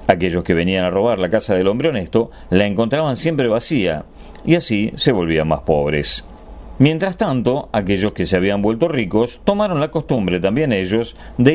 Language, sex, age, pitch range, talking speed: Spanish, male, 40-59, 90-140 Hz, 175 wpm